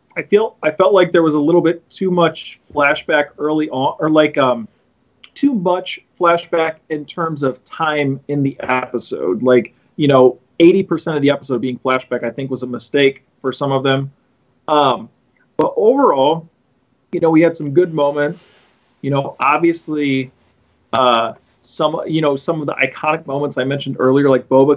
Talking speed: 175 wpm